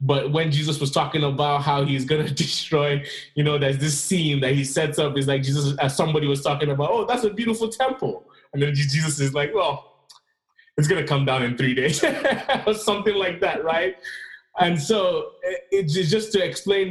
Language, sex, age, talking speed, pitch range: English, male, 20-39, 205 wpm, 135-165 Hz